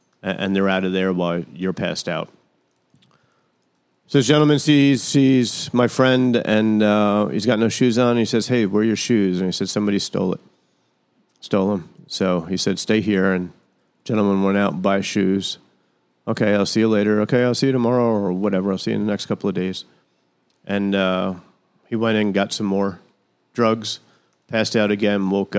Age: 40-59